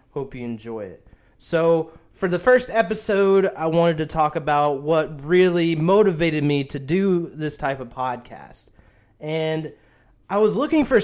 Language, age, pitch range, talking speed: English, 20-39, 140-175 Hz, 160 wpm